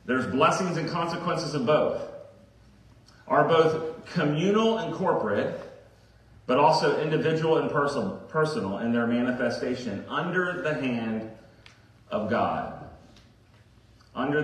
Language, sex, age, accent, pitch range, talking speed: English, male, 40-59, American, 135-200 Hz, 105 wpm